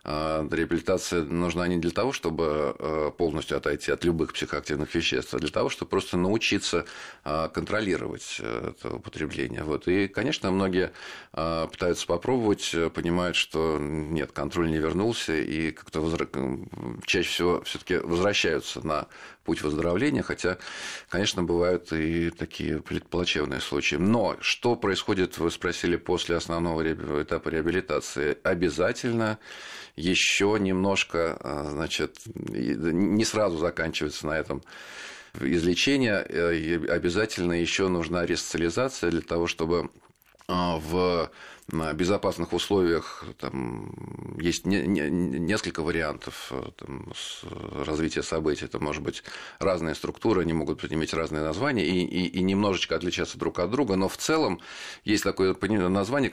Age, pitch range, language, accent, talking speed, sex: 40-59, 85-95 Hz, Russian, native, 120 wpm, male